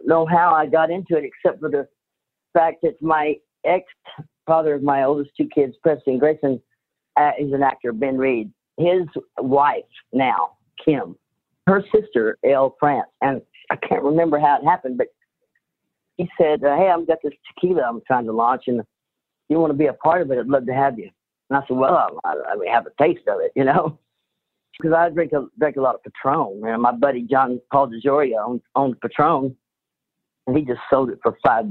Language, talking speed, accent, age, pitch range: English, 195 wpm, American, 50-69, 130-170 Hz